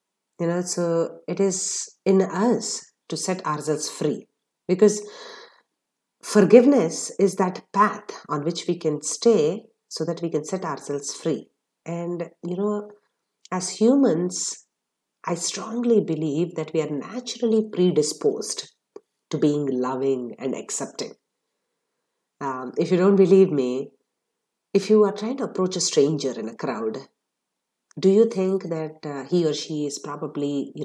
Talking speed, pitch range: 145 wpm, 140-200 Hz